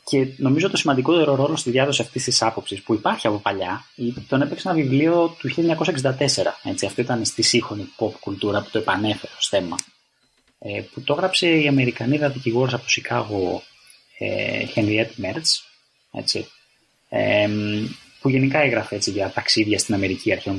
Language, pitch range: Greek, 105-145 Hz